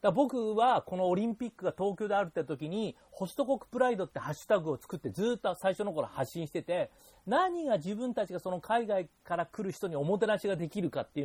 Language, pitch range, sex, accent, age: Japanese, 145-210 Hz, male, native, 40-59